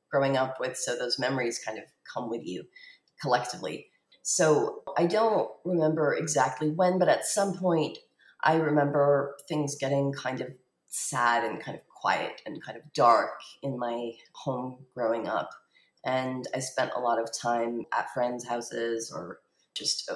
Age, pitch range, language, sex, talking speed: 30-49, 120-155 Hz, English, female, 160 wpm